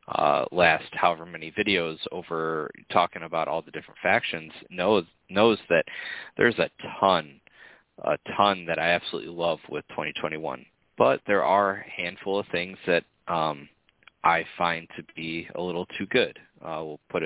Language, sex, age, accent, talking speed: English, male, 20-39, American, 155 wpm